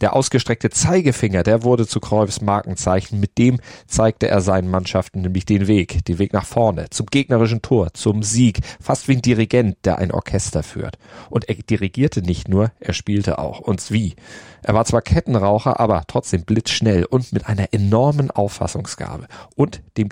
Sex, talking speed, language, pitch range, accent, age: male, 175 wpm, German, 100-125 Hz, German, 40-59